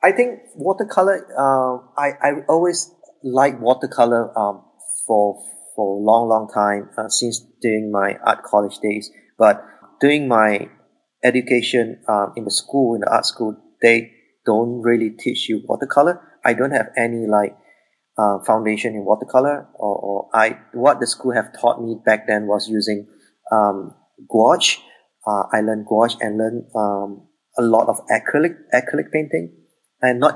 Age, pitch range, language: 30-49, 110-135 Hz, English